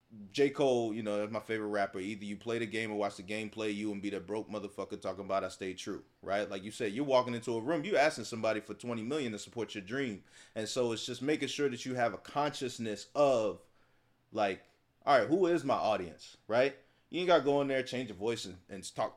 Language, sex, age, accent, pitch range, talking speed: English, male, 30-49, American, 115-140 Hz, 245 wpm